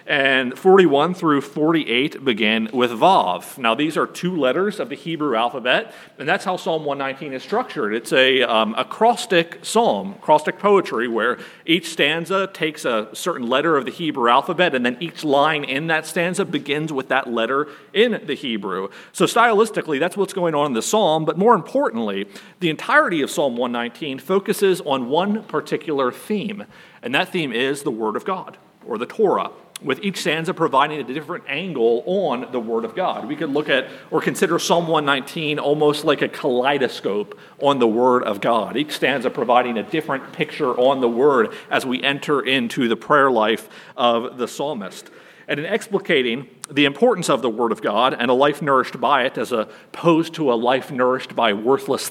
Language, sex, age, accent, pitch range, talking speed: English, male, 40-59, American, 130-180 Hz, 185 wpm